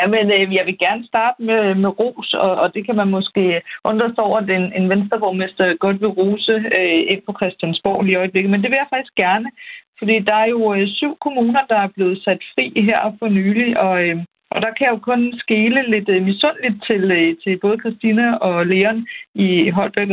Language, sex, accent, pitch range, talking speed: Danish, female, native, 185-220 Hz, 215 wpm